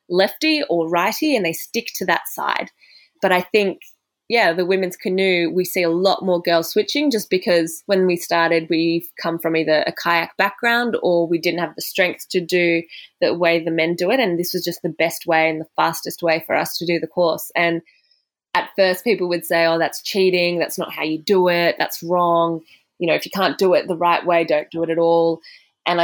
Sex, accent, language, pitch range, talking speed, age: female, Australian, English, 165-185 Hz, 230 wpm, 20-39